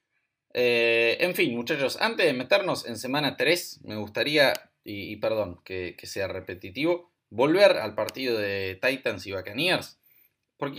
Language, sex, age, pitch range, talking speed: Spanish, male, 20-39, 105-165 Hz, 150 wpm